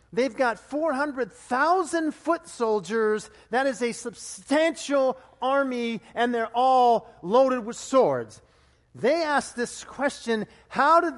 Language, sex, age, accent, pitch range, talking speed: English, male, 50-69, American, 225-265 Hz, 120 wpm